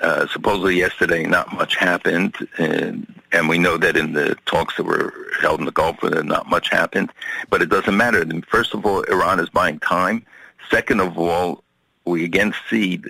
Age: 50-69